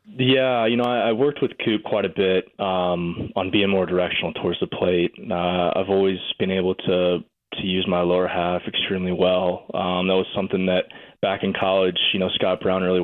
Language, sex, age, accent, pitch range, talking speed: English, male, 20-39, American, 90-100 Hz, 205 wpm